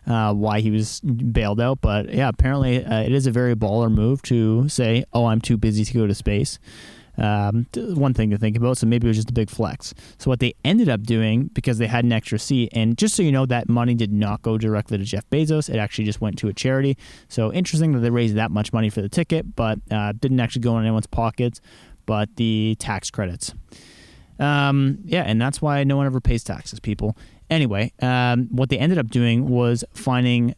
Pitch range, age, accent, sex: 110-130 Hz, 20-39, American, male